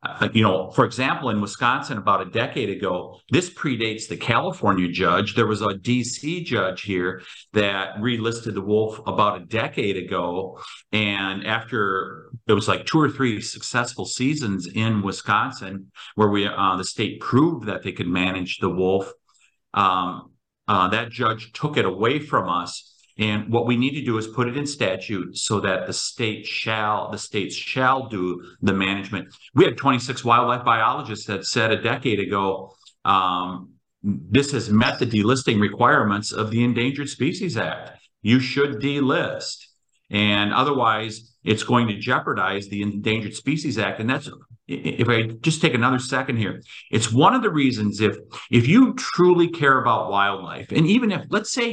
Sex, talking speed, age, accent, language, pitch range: male, 170 wpm, 50-69, American, English, 100-130 Hz